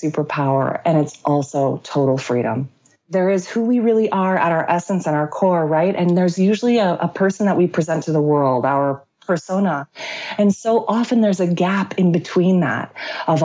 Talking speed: 190 wpm